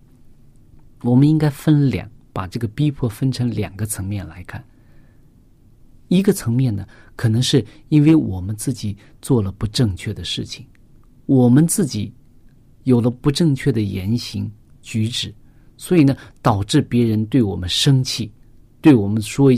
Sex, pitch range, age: male, 110-140 Hz, 50-69